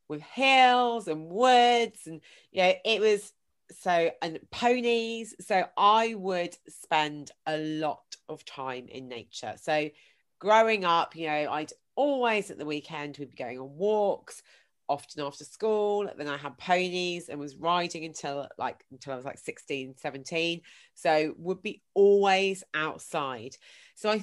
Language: English